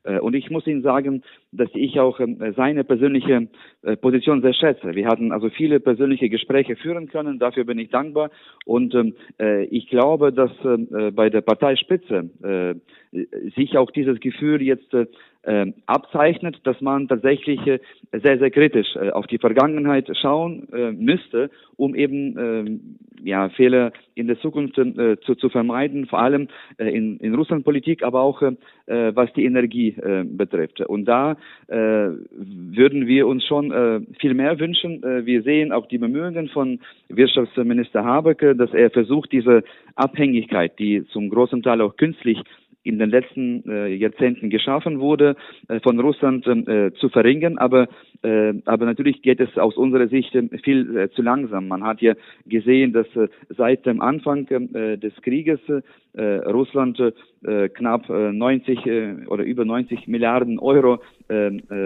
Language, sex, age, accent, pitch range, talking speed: German, male, 40-59, German, 115-140 Hz, 150 wpm